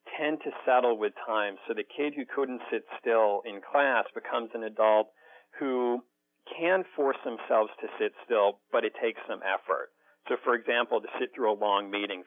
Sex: male